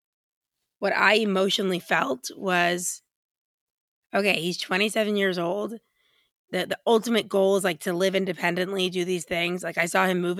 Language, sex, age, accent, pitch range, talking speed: English, female, 20-39, American, 175-205 Hz, 155 wpm